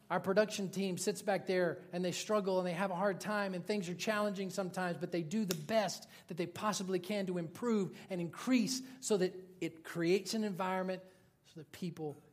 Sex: male